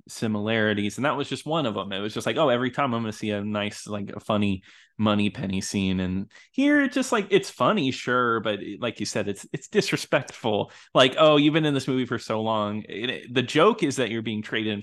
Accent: American